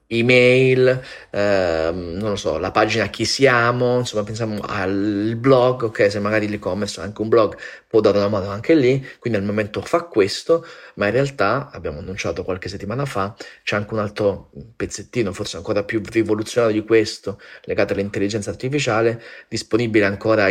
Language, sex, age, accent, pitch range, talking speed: Italian, male, 30-49, native, 100-115 Hz, 165 wpm